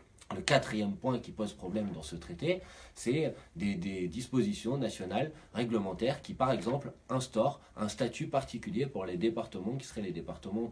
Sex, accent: male, French